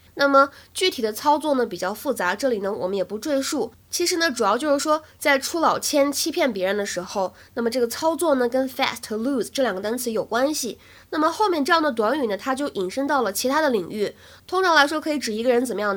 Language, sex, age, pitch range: Chinese, female, 20-39, 205-285 Hz